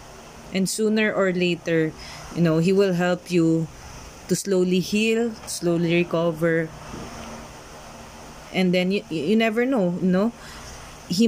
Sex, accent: female, native